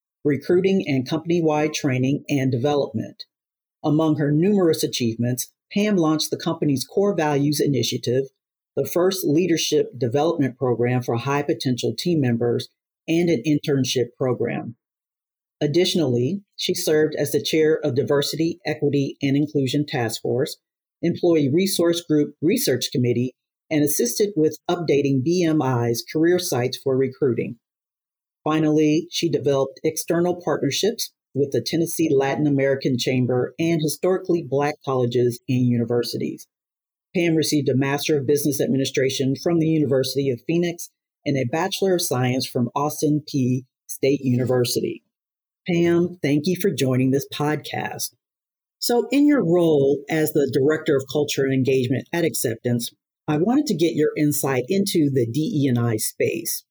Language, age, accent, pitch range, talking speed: English, 40-59, American, 130-165 Hz, 135 wpm